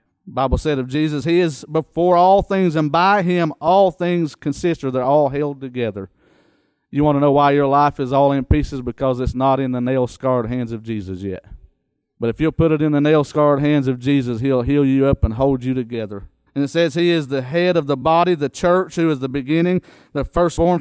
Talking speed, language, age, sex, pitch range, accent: 230 wpm, English, 40-59, male, 115-150 Hz, American